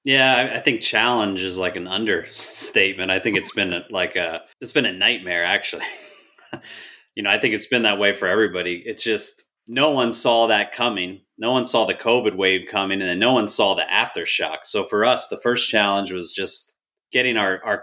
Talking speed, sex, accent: 205 wpm, male, American